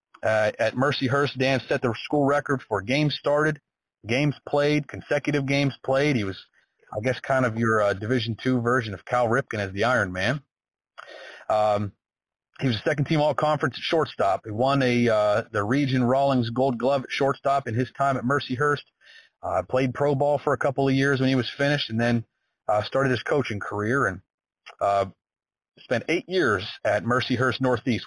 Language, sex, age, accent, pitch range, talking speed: English, male, 30-49, American, 115-140 Hz, 185 wpm